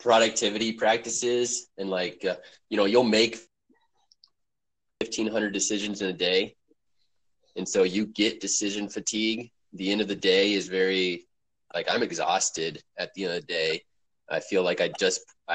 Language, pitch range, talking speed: English, 95-120 Hz, 160 wpm